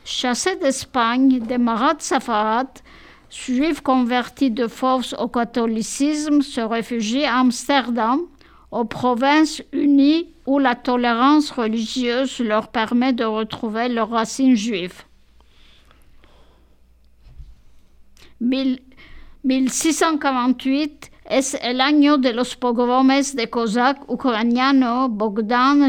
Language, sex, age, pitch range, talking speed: French, female, 50-69, 230-270 Hz, 90 wpm